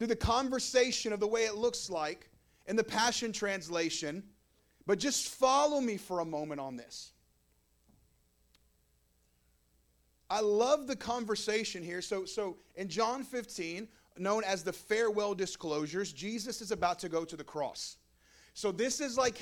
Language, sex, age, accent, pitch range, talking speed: English, male, 40-59, American, 160-230 Hz, 150 wpm